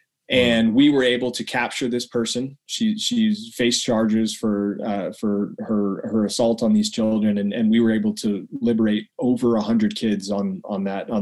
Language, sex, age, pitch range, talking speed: English, male, 20-39, 110-135 Hz, 195 wpm